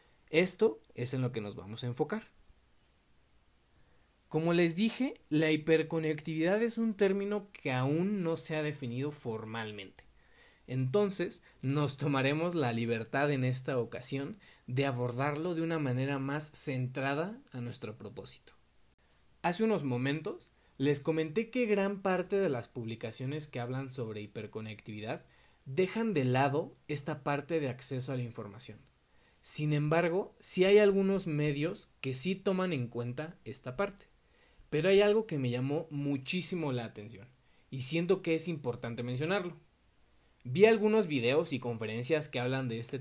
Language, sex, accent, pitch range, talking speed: Spanish, male, Mexican, 125-165 Hz, 145 wpm